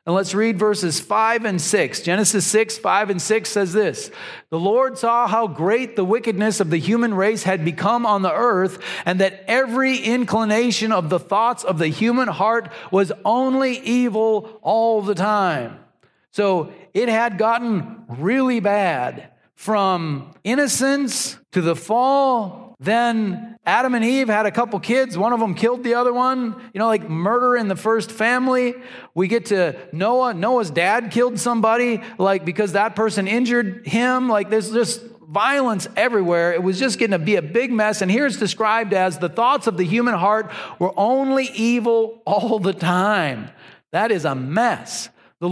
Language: English